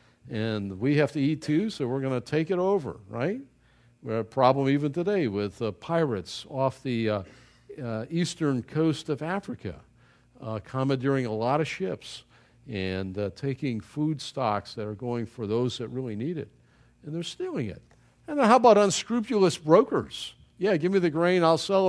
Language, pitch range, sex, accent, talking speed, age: English, 120-190 Hz, male, American, 185 wpm, 50-69